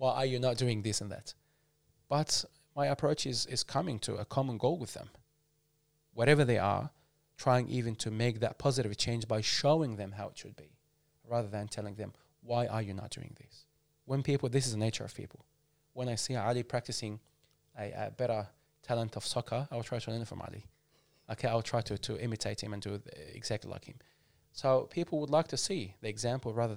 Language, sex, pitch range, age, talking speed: English, male, 110-140 Hz, 20-39, 215 wpm